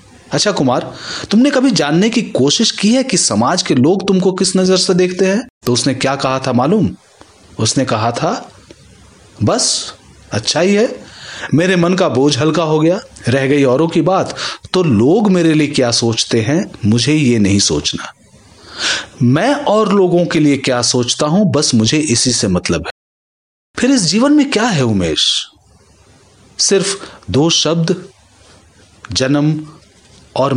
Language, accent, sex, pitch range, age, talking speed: Hindi, native, male, 120-170 Hz, 30-49, 160 wpm